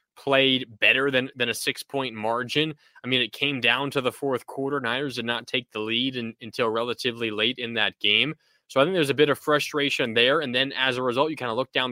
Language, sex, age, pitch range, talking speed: English, male, 20-39, 120-145 Hz, 240 wpm